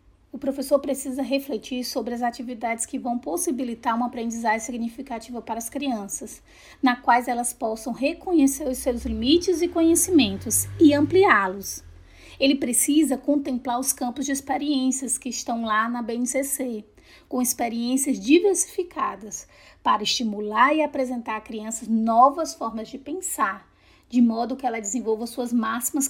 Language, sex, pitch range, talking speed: English, female, 230-270 Hz, 140 wpm